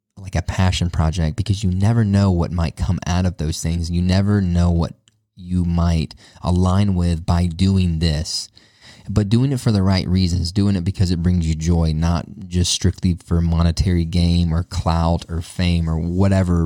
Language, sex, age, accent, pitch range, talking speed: English, male, 20-39, American, 85-100 Hz, 185 wpm